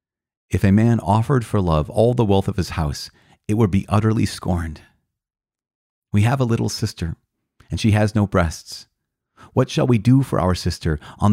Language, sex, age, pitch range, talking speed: English, male, 40-59, 90-120 Hz, 185 wpm